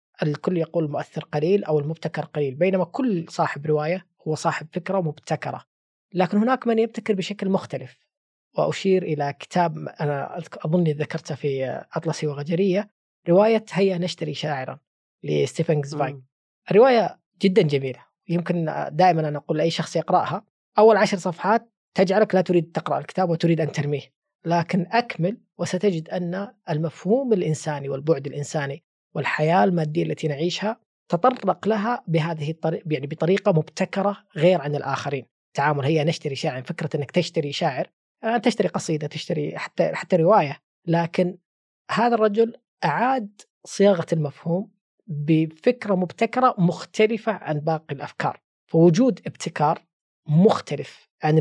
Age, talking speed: 20-39, 125 wpm